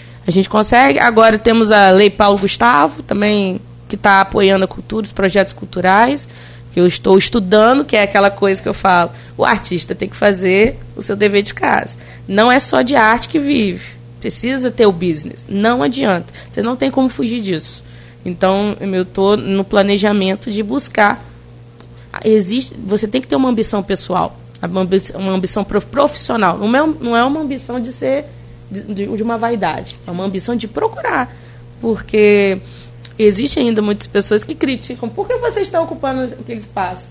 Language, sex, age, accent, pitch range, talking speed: Portuguese, female, 20-39, Brazilian, 185-235 Hz, 170 wpm